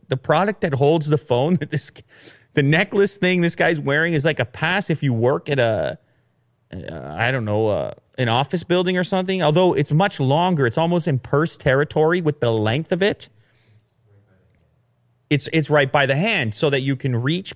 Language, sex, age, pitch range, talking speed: English, male, 30-49, 125-180 Hz, 190 wpm